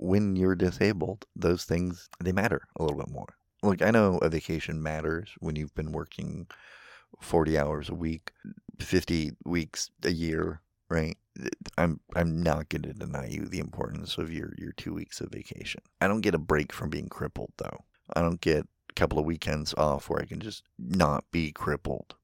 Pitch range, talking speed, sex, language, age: 80-90 Hz, 190 wpm, male, English, 30-49